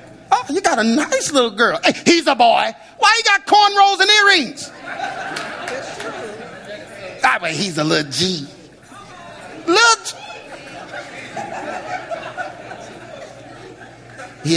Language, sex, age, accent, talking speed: English, male, 40-59, American, 105 wpm